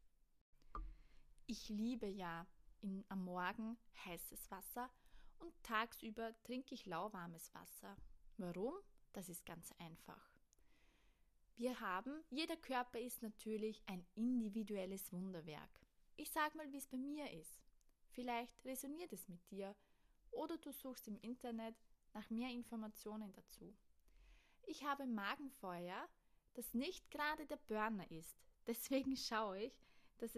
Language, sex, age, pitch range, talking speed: German, female, 20-39, 190-255 Hz, 125 wpm